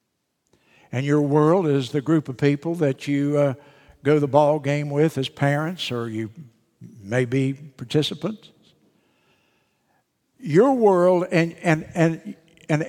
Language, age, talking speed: English, 60-79, 125 wpm